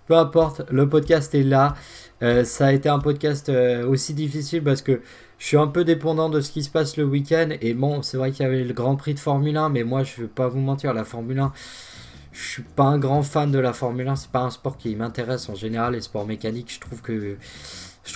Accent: French